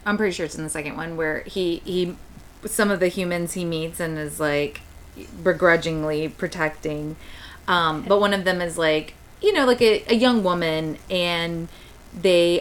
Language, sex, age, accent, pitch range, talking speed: English, female, 30-49, American, 155-205 Hz, 180 wpm